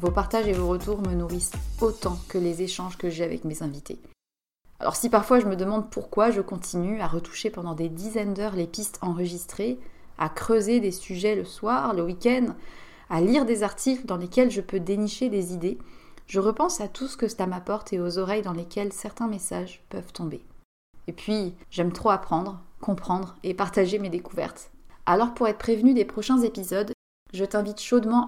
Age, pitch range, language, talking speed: 30-49, 180-230 Hz, French, 190 wpm